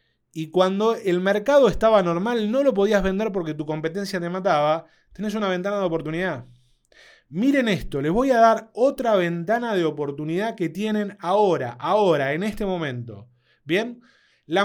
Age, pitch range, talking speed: 30-49, 145-210 Hz, 160 wpm